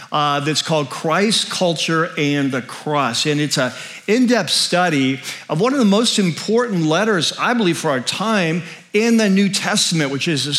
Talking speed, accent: 180 wpm, American